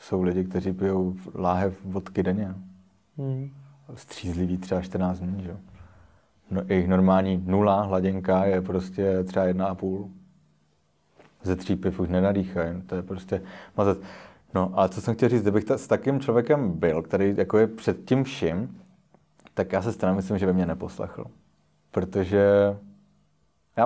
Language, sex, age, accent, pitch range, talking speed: Czech, male, 30-49, native, 95-110 Hz, 145 wpm